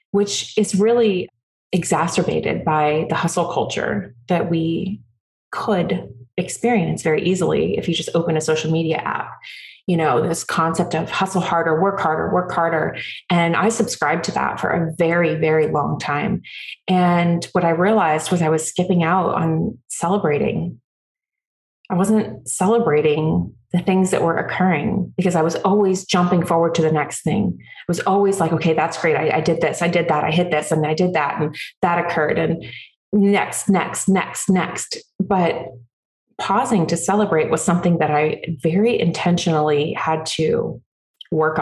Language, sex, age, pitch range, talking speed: English, female, 30-49, 155-190 Hz, 165 wpm